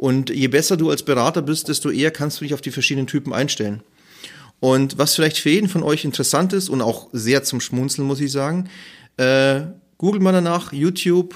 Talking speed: 205 wpm